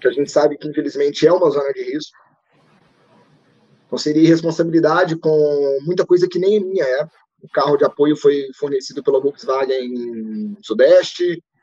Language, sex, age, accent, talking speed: Portuguese, male, 20-39, Brazilian, 165 wpm